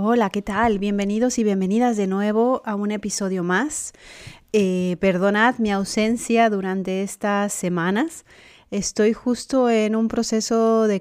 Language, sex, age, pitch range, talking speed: Spanish, female, 30-49, 180-215 Hz, 135 wpm